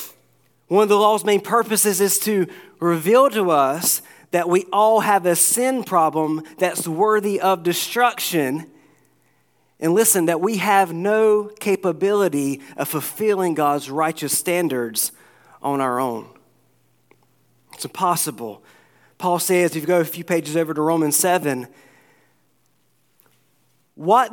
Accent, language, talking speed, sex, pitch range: American, English, 130 wpm, male, 160-210 Hz